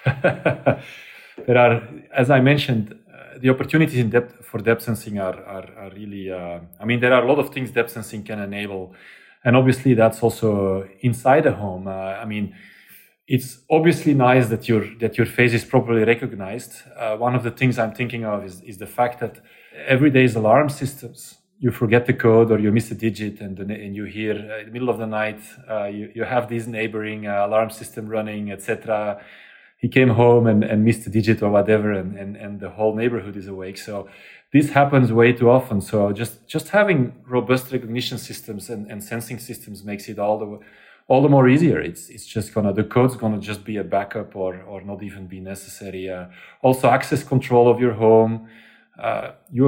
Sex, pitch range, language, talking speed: male, 105-120 Hz, English, 205 wpm